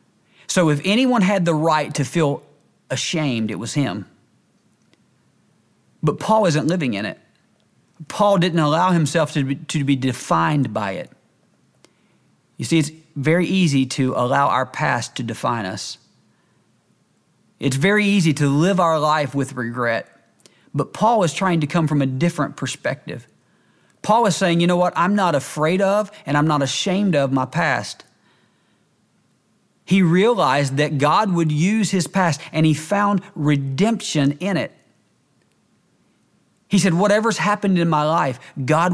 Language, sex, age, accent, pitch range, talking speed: English, male, 40-59, American, 140-185 Hz, 150 wpm